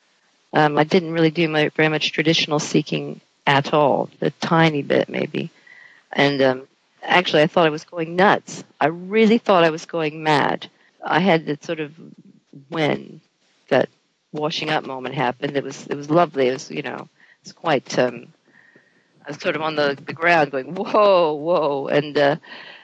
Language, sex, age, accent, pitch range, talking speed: English, female, 50-69, American, 145-175 Hz, 180 wpm